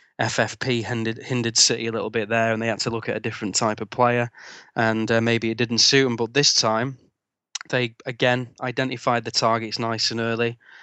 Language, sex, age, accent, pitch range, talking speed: English, male, 20-39, British, 110-120 Hz, 205 wpm